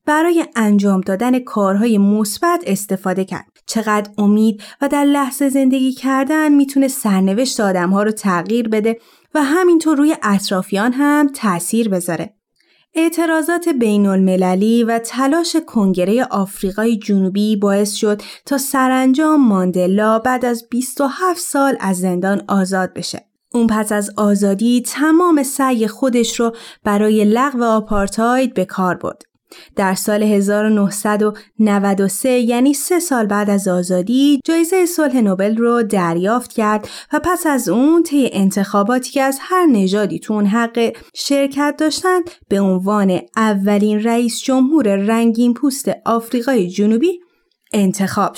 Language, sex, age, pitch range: Persian, female, 30-49, 200-270 Hz